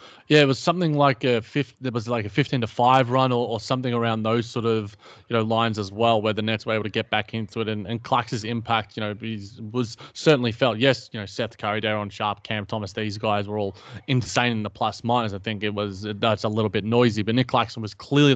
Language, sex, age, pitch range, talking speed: English, male, 20-39, 110-130 Hz, 260 wpm